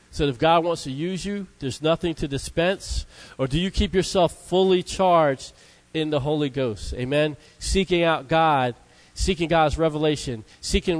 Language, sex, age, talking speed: English, male, 40-59, 170 wpm